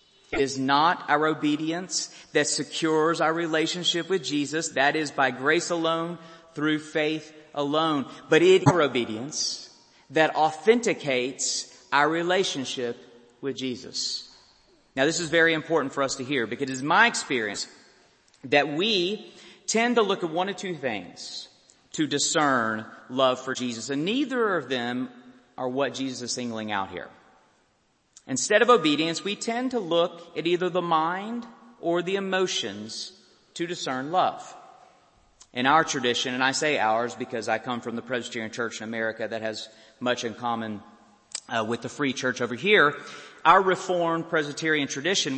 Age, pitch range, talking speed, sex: 40-59, 125-170 Hz, 155 wpm, male